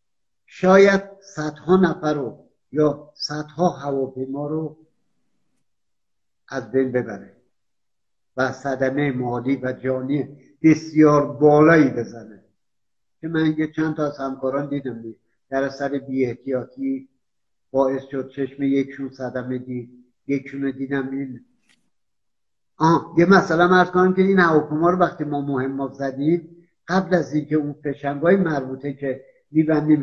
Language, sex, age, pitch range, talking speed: Persian, male, 60-79, 140-175 Hz, 125 wpm